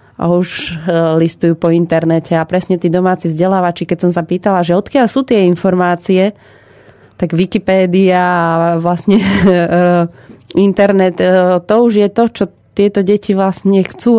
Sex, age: female, 30-49